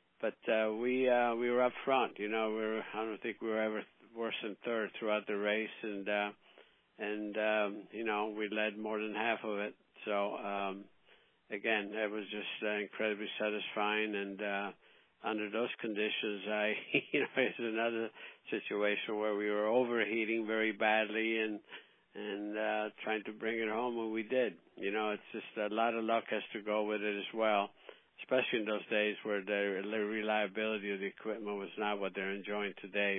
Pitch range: 100-110 Hz